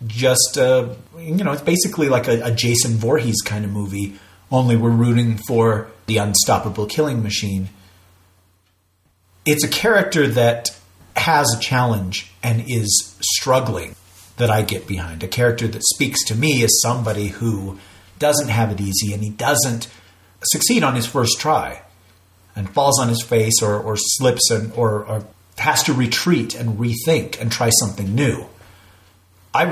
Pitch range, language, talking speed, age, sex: 95-125 Hz, English, 160 wpm, 40-59, male